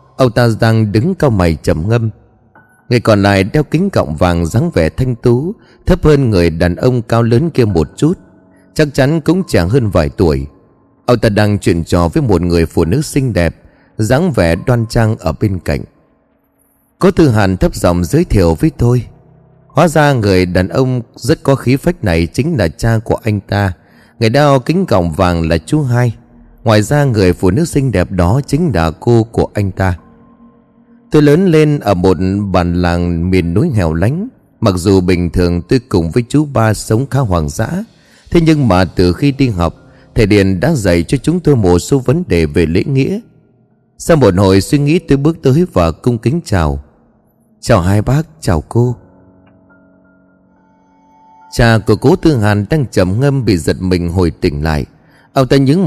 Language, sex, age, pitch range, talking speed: Vietnamese, male, 20-39, 90-140 Hz, 195 wpm